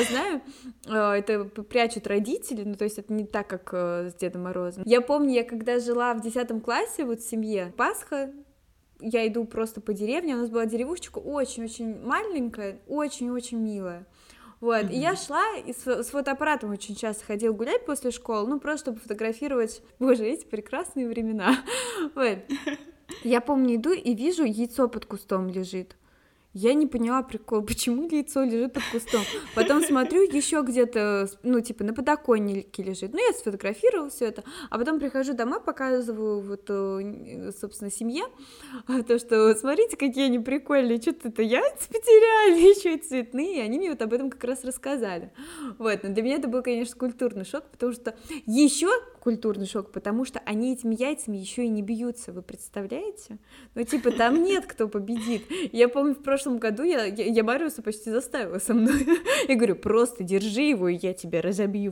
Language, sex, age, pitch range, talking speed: Russian, female, 20-39, 220-280 Hz, 170 wpm